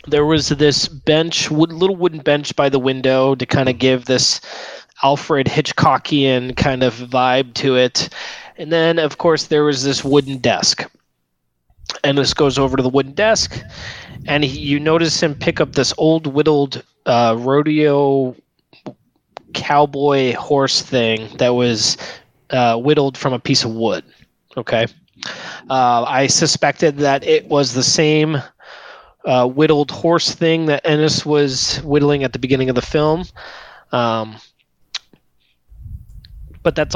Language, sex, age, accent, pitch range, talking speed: English, male, 20-39, American, 130-155 Hz, 145 wpm